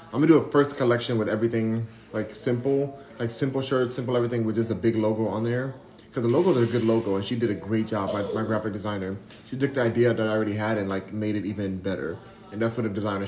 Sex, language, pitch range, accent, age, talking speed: male, English, 110-130 Hz, American, 20-39, 260 wpm